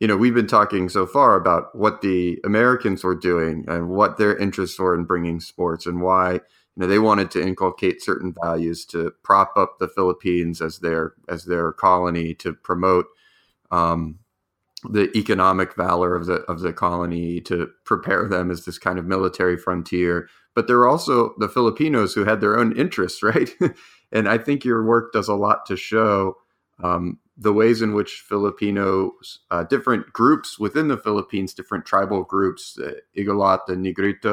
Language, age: English, 30-49